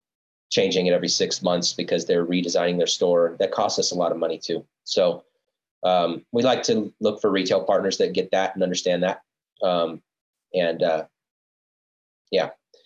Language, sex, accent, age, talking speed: English, male, American, 30-49, 175 wpm